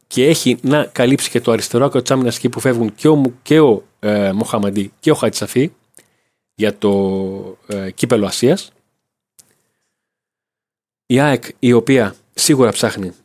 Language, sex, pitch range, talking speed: Greek, male, 105-130 Hz, 135 wpm